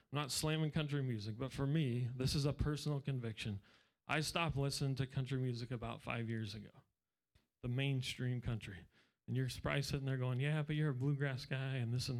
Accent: American